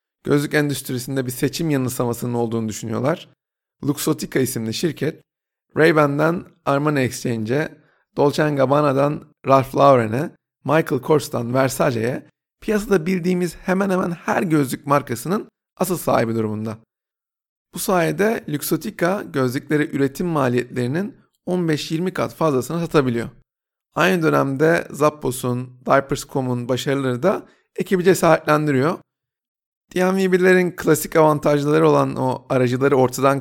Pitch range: 130-170 Hz